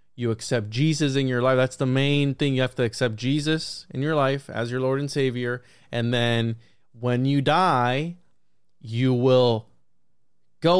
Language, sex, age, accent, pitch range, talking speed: English, male, 20-39, American, 120-145 Hz, 170 wpm